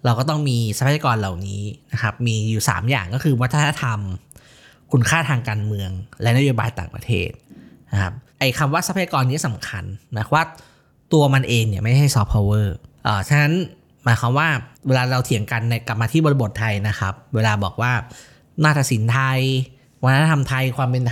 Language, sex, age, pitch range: Thai, male, 20-39, 110-140 Hz